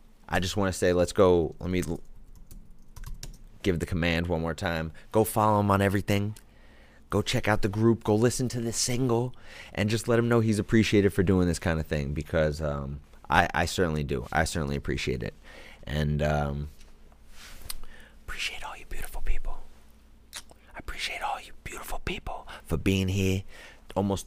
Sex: male